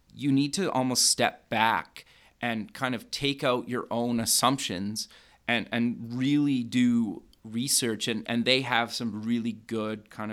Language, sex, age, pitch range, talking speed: English, male, 30-49, 110-120 Hz, 155 wpm